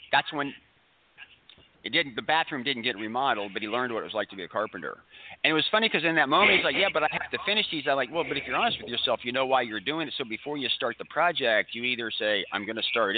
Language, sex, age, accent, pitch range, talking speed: English, male, 40-59, American, 115-150 Hz, 295 wpm